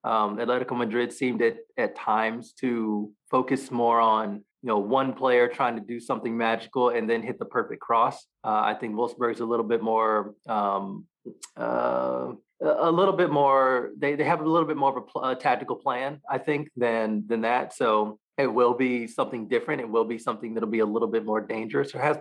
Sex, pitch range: male, 110-130 Hz